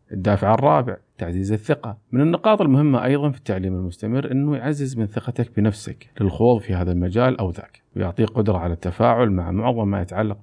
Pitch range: 95-130 Hz